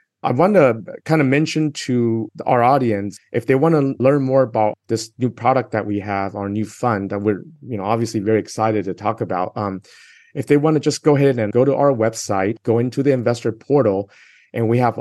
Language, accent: English, American